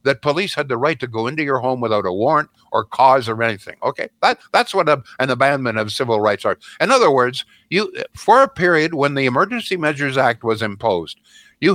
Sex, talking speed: male, 220 wpm